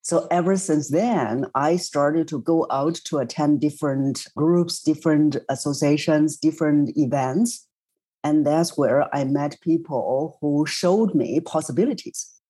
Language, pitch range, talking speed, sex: English, 150-185 Hz, 130 wpm, female